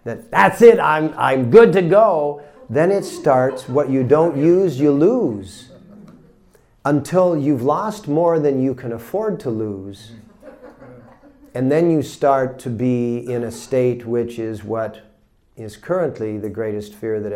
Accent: American